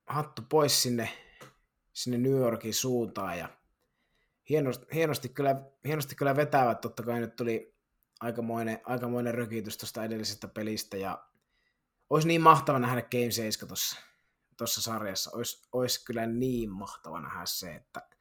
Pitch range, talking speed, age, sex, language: 110-130 Hz, 140 wpm, 20-39, male, Finnish